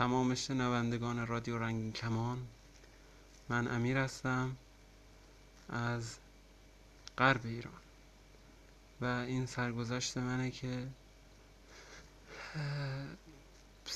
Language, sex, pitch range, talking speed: English, male, 115-130 Hz, 70 wpm